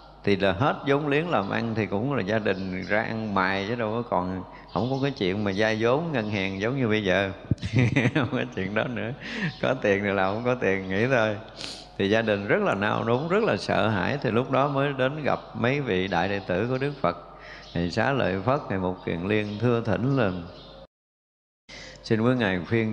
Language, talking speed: Vietnamese, 225 wpm